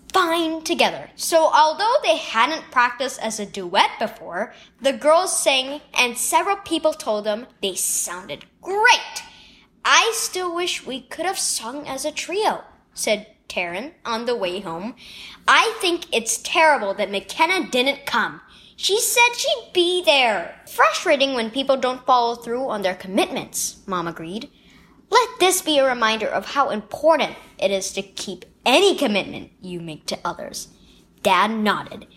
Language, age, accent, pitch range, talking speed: English, 10-29, American, 225-330 Hz, 155 wpm